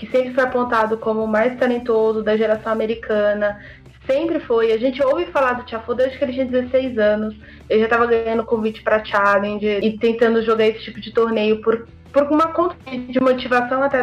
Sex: female